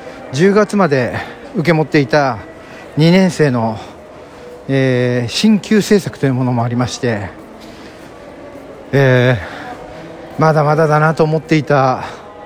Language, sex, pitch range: Japanese, male, 130-165 Hz